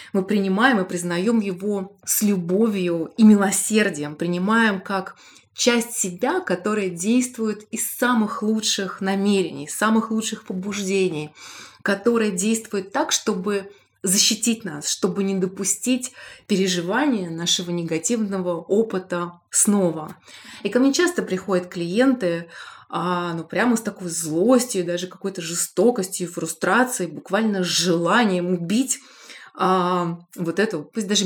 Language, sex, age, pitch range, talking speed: Russian, female, 20-39, 175-215 Hz, 115 wpm